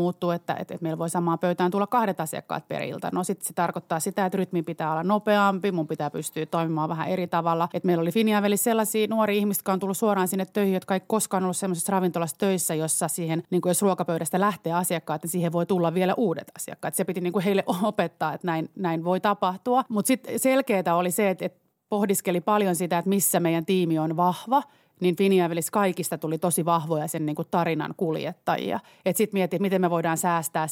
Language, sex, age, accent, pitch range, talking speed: Finnish, female, 30-49, native, 165-195 Hz, 210 wpm